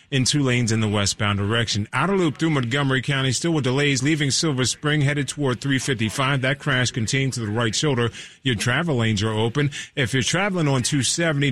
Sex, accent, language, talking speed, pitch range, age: male, American, English, 200 wpm, 120-150 Hz, 30-49